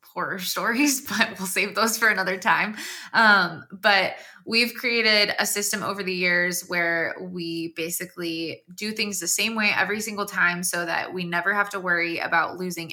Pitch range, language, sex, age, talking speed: 175-200 Hz, English, female, 20-39, 175 wpm